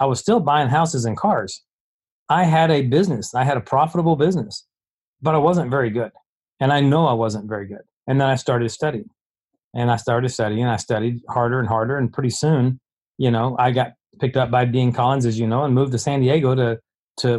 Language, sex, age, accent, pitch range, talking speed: English, male, 40-59, American, 115-150 Hz, 225 wpm